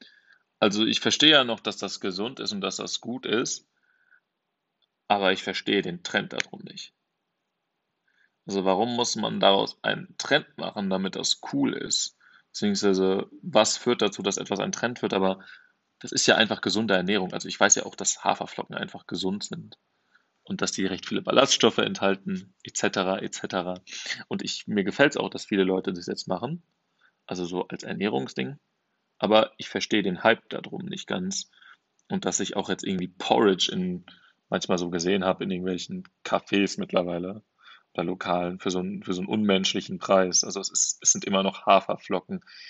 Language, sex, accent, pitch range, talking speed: German, male, German, 95-125 Hz, 175 wpm